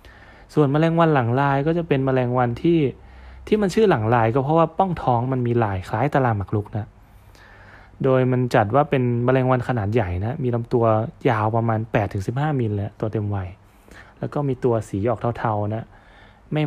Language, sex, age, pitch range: Thai, male, 20-39, 105-140 Hz